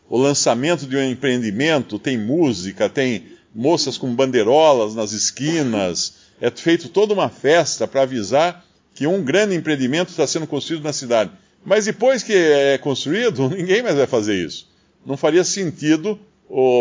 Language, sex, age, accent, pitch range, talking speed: Portuguese, male, 50-69, Brazilian, 130-180 Hz, 155 wpm